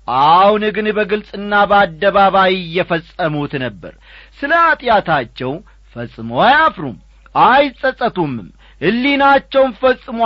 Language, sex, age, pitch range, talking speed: Amharic, male, 40-59, 155-230 Hz, 70 wpm